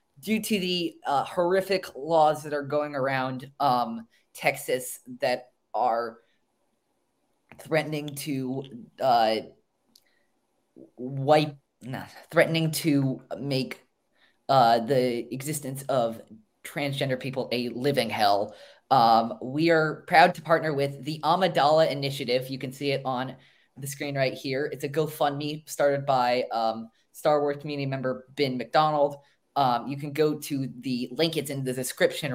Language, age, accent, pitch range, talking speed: English, 20-39, American, 130-155 Hz, 135 wpm